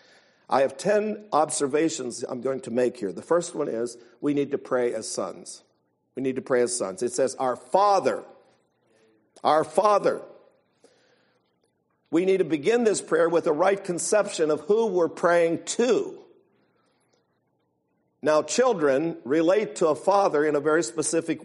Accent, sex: American, male